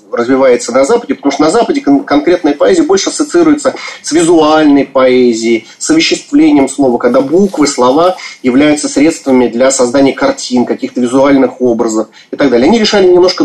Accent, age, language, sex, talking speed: native, 30-49, Russian, male, 155 wpm